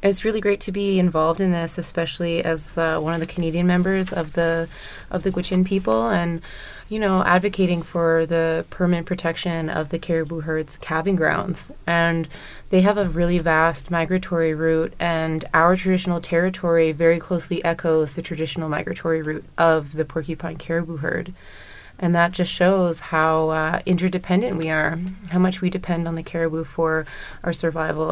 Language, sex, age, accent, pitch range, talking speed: English, female, 20-39, American, 160-180 Hz, 170 wpm